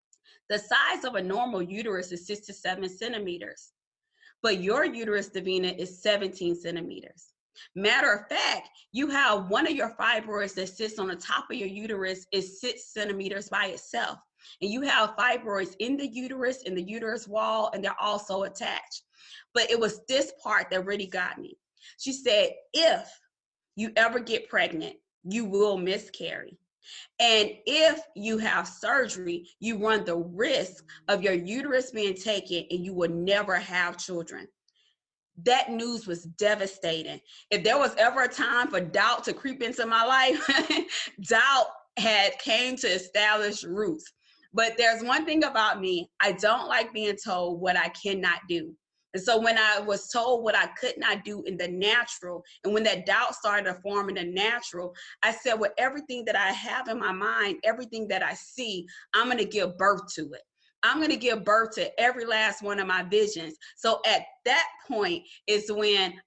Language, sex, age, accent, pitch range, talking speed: English, female, 20-39, American, 190-250 Hz, 175 wpm